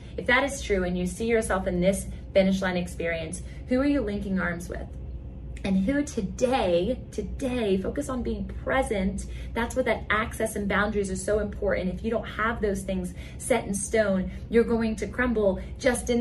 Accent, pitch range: American, 180-225 Hz